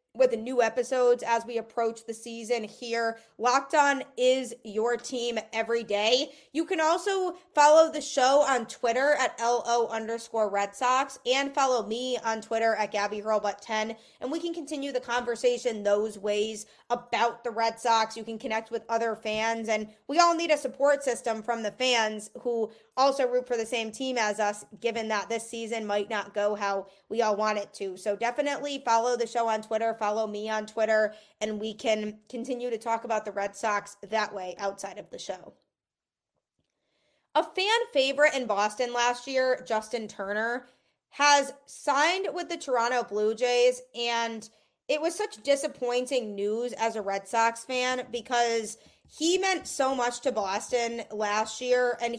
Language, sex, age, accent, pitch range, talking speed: English, female, 20-39, American, 220-265 Hz, 175 wpm